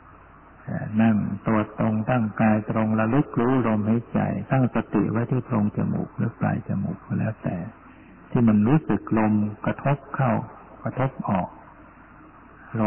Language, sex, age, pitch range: Thai, male, 60-79, 105-120 Hz